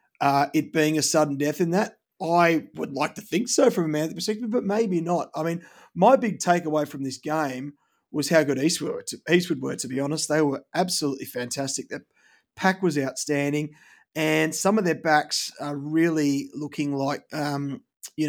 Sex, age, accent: male, 30-49, Australian